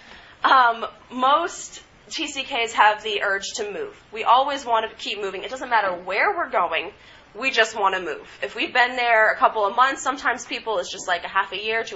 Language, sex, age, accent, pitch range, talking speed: English, female, 20-39, American, 195-245 Hz, 215 wpm